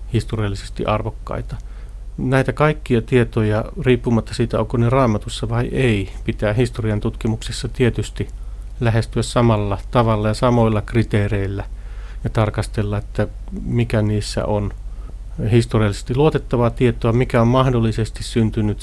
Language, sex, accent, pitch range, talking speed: Finnish, male, native, 105-115 Hz, 110 wpm